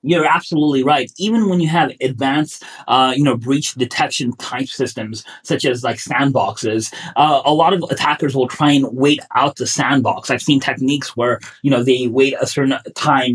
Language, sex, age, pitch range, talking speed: English, male, 30-49, 125-140 Hz, 190 wpm